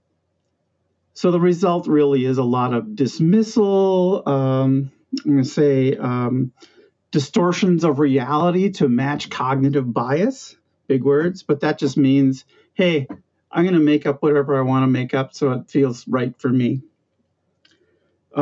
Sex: male